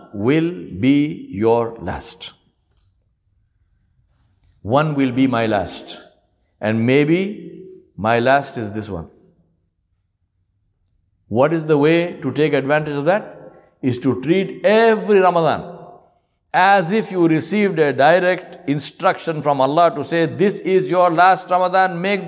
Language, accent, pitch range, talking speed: English, Indian, 110-175 Hz, 125 wpm